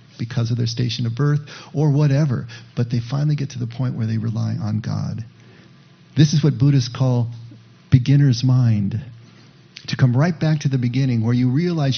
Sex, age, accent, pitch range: male, 50-69, American, 120-145 Hz